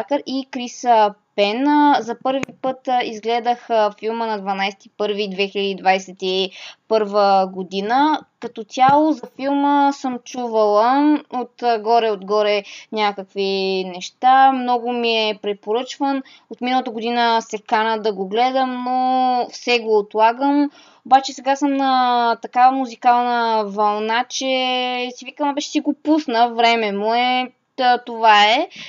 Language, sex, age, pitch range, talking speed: Bulgarian, female, 20-39, 215-255 Hz, 110 wpm